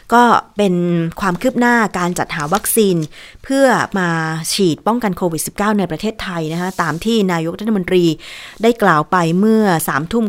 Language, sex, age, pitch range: Thai, female, 20-39, 170-220 Hz